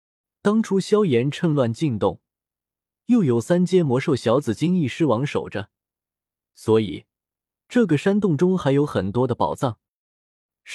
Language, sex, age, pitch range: Chinese, male, 20-39, 110-165 Hz